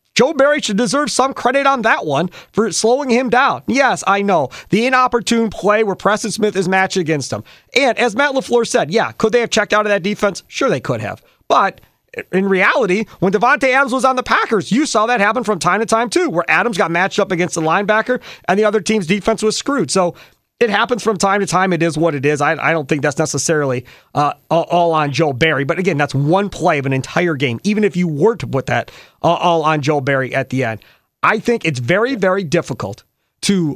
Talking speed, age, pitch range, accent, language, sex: 235 wpm, 40-59, 160-220 Hz, American, English, male